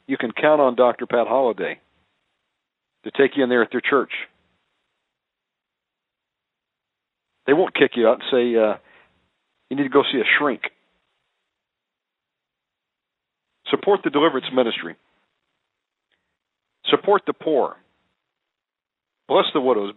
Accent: American